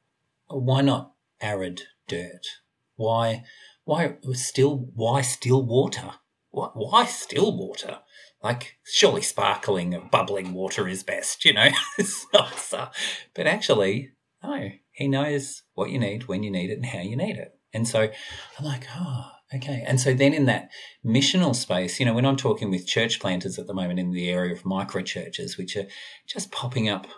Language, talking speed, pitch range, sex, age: English, 175 wpm, 100-135 Hz, male, 40-59